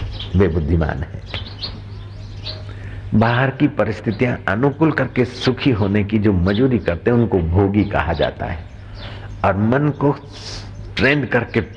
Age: 60-79